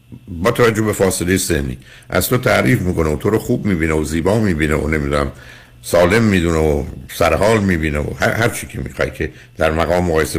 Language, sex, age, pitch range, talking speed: Persian, male, 60-79, 80-110 Hz, 185 wpm